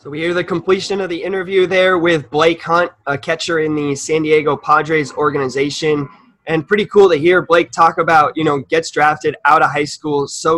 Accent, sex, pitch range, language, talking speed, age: American, male, 135-160 Hz, English, 210 wpm, 20-39